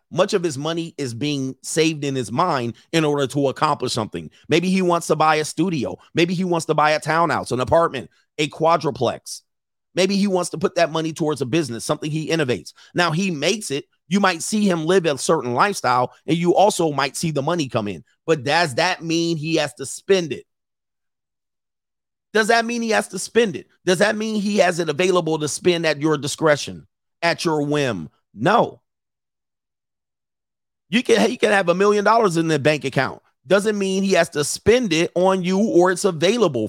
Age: 40-59